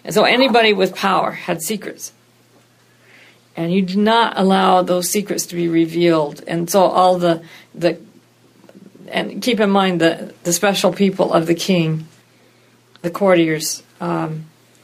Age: 50-69